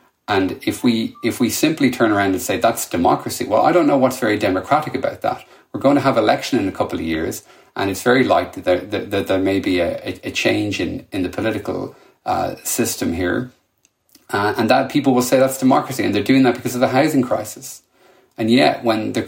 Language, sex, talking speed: English, male, 225 wpm